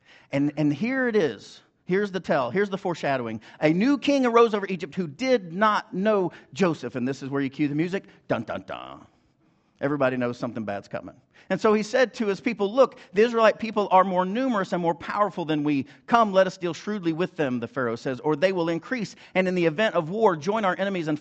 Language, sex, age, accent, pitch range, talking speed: English, male, 50-69, American, 140-185 Hz, 225 wpm